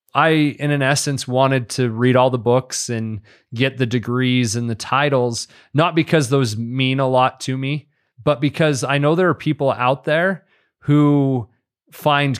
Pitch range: 120-140 Hz